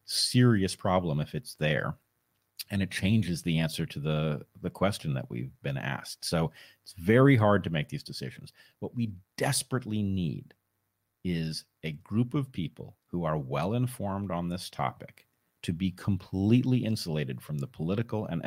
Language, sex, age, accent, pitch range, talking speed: English, male, 40-59, American, 80-115 Hz, 160 wpm